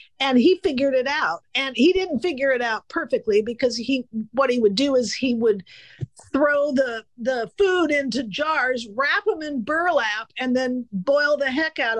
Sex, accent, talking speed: female, American, 185 wpm